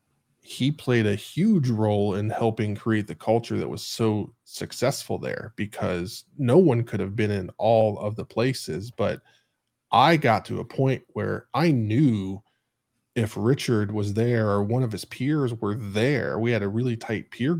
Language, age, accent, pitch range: English, 20-39, American, 105-120 Hz